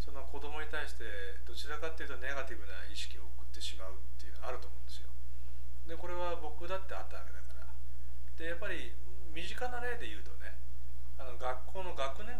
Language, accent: Japanese, native